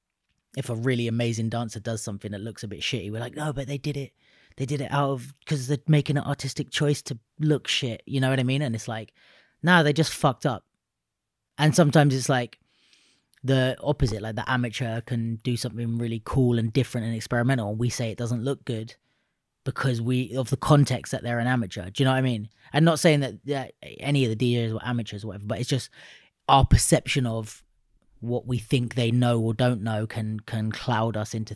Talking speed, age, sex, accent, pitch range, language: 225 wpm, 30-49, female, British, 110-140 Hz, English